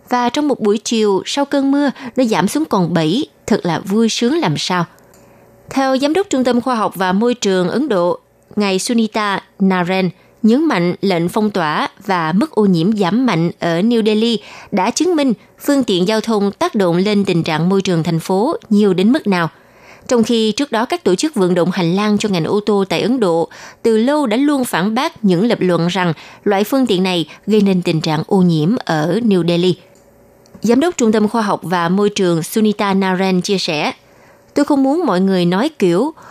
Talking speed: 215 wpm